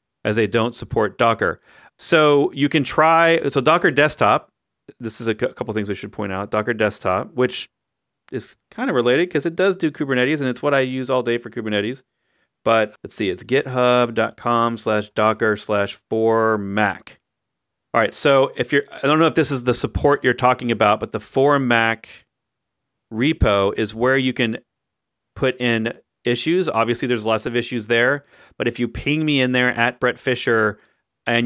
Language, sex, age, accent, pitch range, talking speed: English, male, 40-59, American, 110-130 Hz, 185 wpm